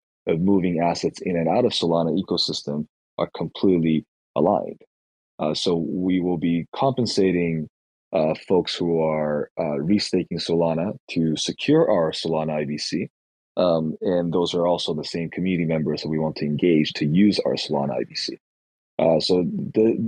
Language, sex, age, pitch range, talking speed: English, male, 30-49, 80-95 Hz, 155 wpm